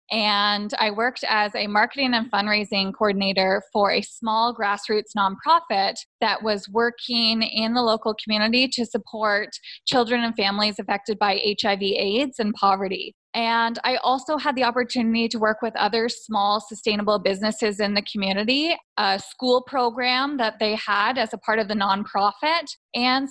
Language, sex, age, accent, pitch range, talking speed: English, female, 20-39, American, 205-245 Hz, 155 wpm